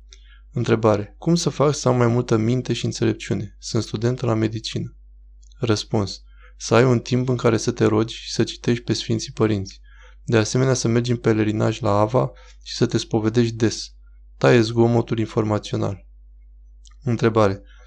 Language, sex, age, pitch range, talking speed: Romanian, male, 20-39, 105-125 Hz, 160 wpm